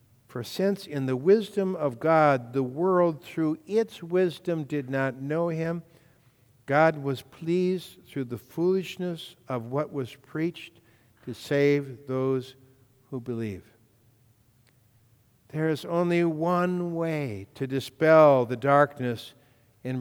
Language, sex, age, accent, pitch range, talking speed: English, male, 60-79, American, 125-150 Hz, 125 wpm